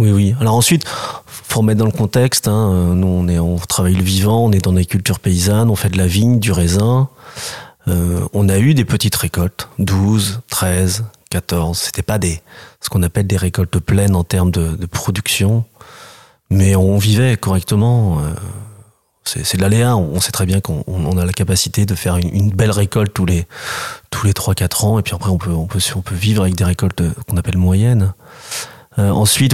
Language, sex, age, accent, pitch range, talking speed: French, male, 30-49, French, 95-115 Hz, 205 wpm